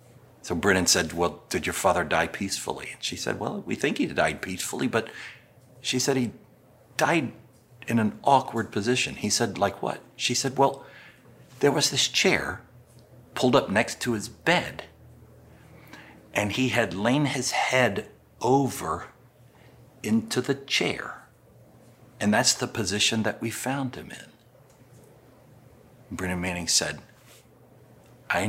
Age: 60-79